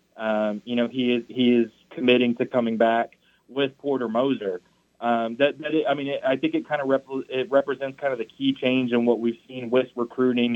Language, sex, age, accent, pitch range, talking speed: English, male, 30-49, American, 115-135 Hz, 225 wpm